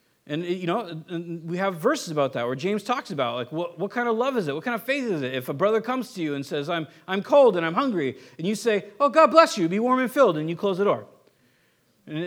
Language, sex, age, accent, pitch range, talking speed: English, male, 40-59, American, 135-200 Hz, 280 wpm